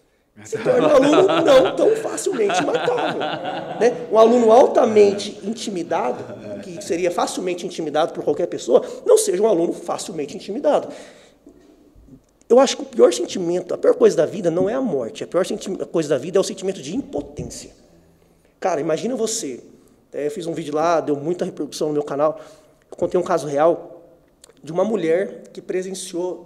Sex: male